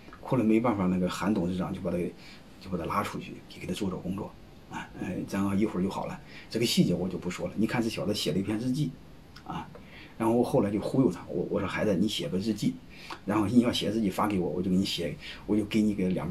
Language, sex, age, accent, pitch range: Chinese, male, 30-49, native, 95-115 Hz